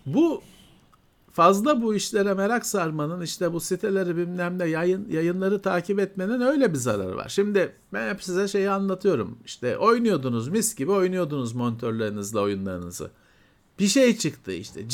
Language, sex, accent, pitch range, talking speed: Turkish, male, native, 140-220 Hz, 145 wpm